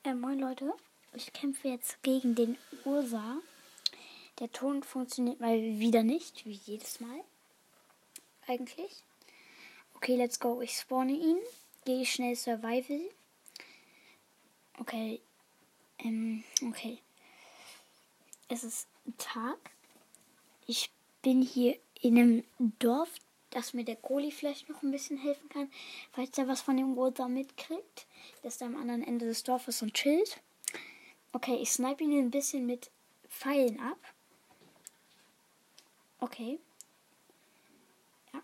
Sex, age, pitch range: female, 10-29, 240-285 Hz